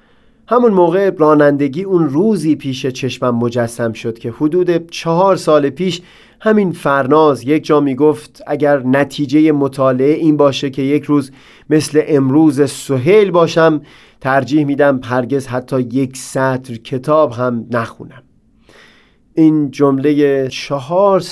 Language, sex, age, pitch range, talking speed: Persian, male, 30-49, 125-150 Hz, 125 wpm